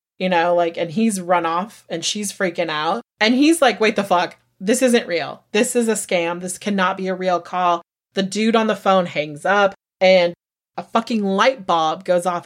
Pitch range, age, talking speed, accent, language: 180-235 Hz, 30-49, 210 wpm, American, English